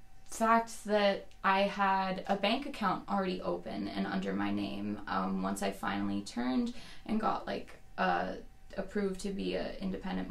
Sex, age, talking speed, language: female, 20-39, 155 wpm, English